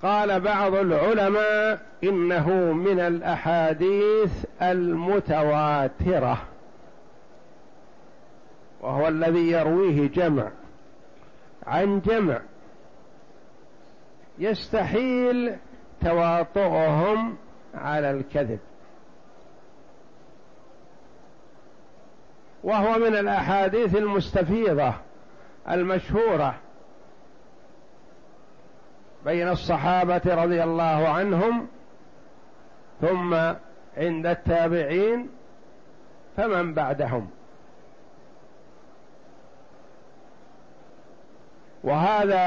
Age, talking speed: 60-79, 45 wpm